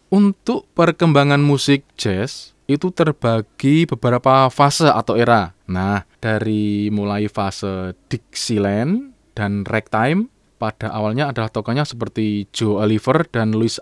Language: Indonesian